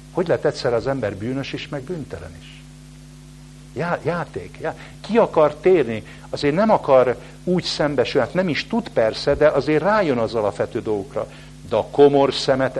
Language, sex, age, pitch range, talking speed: English, male, 60-79, 100-140 Hz, 175 wpm